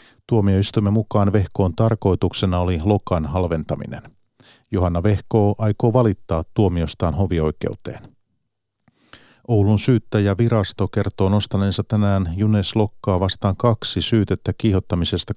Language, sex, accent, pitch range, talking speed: Finnish, male, native, 95-110 Hz, 95 wpm